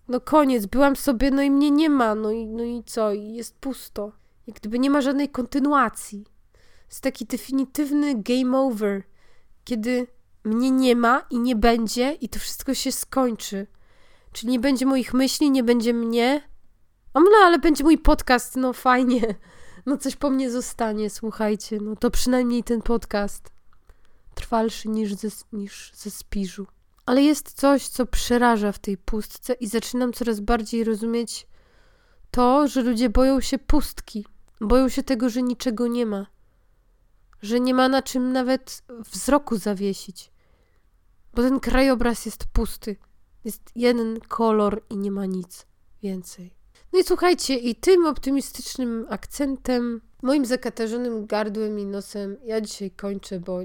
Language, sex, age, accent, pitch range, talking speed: Polish, female, 20-39, native, 210-260 Hz, 150 wpm